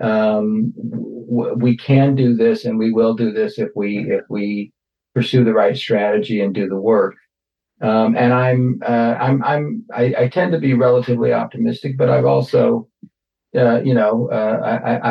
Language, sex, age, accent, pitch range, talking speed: English, male, 50-69, American, 110-130 Hz, 170 wpm